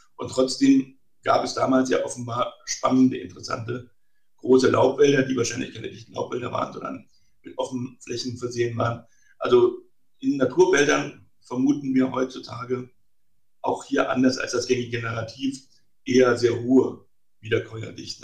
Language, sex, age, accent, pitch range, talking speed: German, male, 60-79, German, 115-135 Hz, 130 wpm